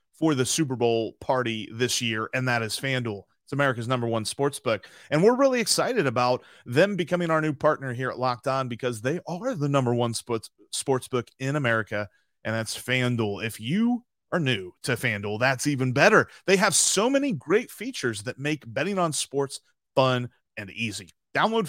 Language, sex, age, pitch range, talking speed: English, male, 30-49, 120-175 Hz, 190 wpm